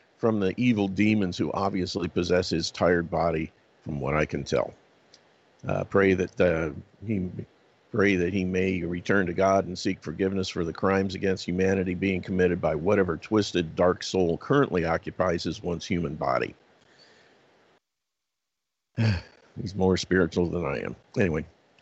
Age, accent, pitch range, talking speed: 50-69, American, 85-95 Hz, 145 wpm